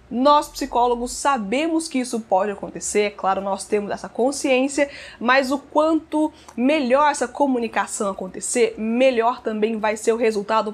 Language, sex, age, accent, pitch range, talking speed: Portuguese, female, 20-39, Brazilian, 225-275 Hz, 145 wpm